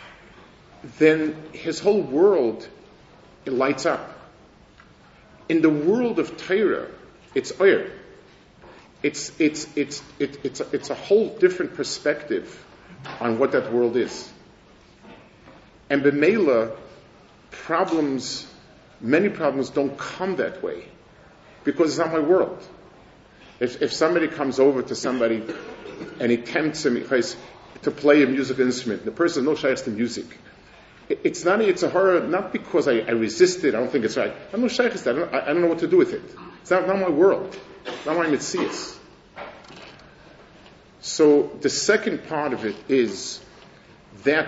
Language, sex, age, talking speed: English, male, 50-69, 150 wpm